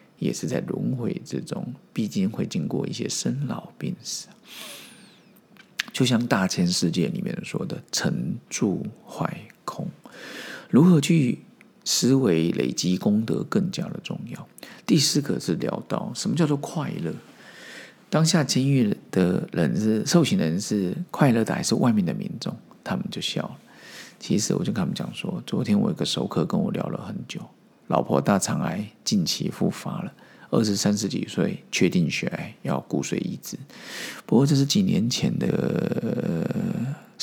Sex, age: male, 50-69